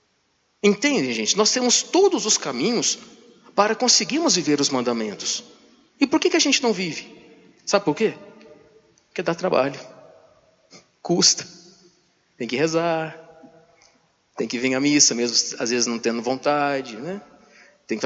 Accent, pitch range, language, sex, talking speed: Brazilian, 145-230 Hz, Portuguese, male, 145 wpm